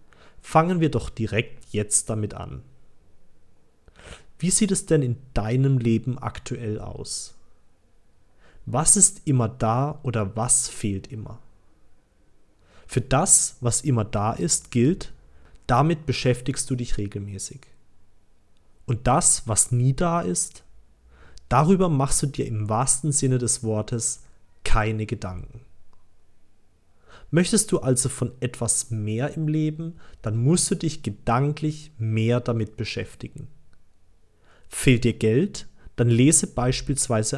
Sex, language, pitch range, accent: male, German, 100-135 Hz, German